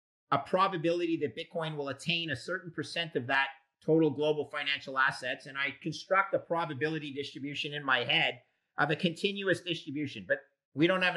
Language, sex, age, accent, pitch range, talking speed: English, male, 50-69, American, 140-175 Hz, 170 wpm